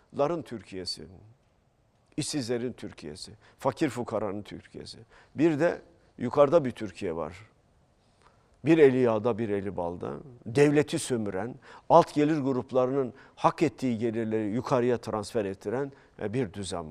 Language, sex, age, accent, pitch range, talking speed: Turkish, male, 50-69, native, 110-165 Hz, 115 wpm